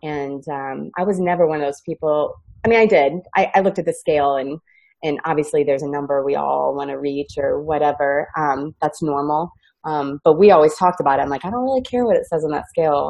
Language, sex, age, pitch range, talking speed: English, female, 30-49, 145-170 Hz, 245 wpm